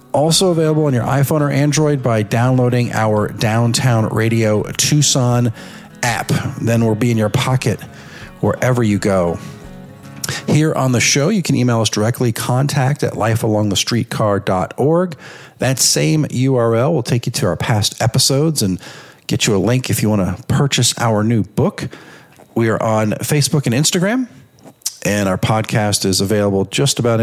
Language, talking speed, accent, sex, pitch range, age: English, 155 wpm, American, male, 110-140 Hz, 40-59